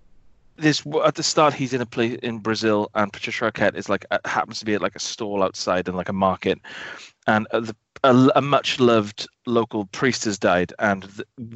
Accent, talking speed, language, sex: British, 210 wpm, English, male